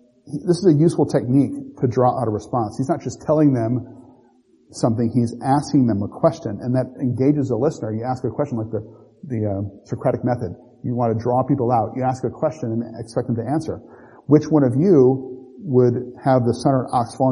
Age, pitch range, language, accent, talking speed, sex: 40-59, 120-135 Hz, English, American, 210 wpm, male